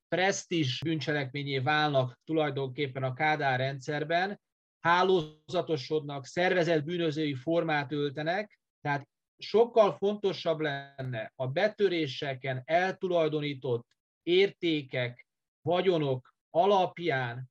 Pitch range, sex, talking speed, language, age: 135-170 Hz, male, 75 wpm, Hungarian, 30-49